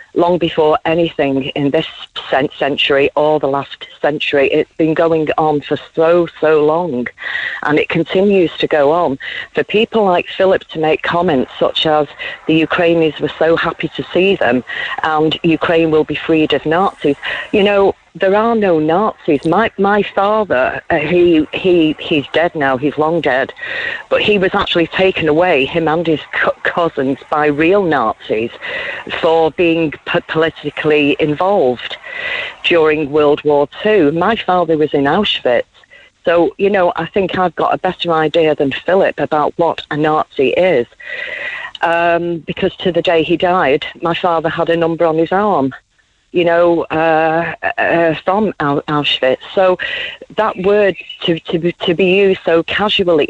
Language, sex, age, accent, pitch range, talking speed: English, female, 40-59, British, 155-195 Hz, 160 wpm